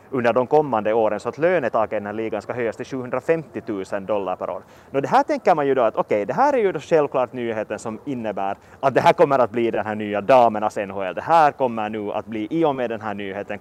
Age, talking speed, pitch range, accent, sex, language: 30-49, 270 wpm, 110-175 Hz, Finnish, male, Swedish